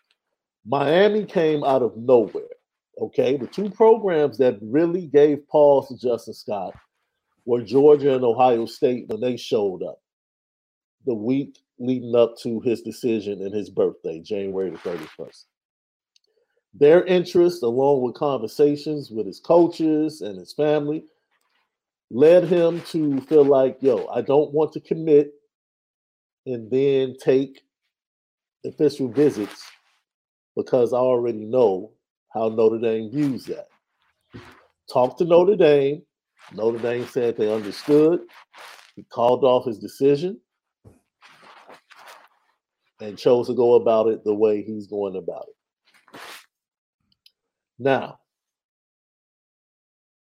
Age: 50-69